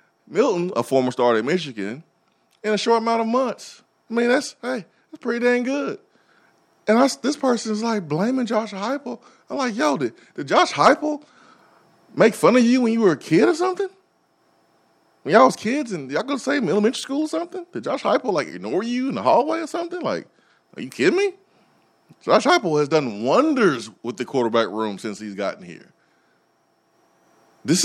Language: English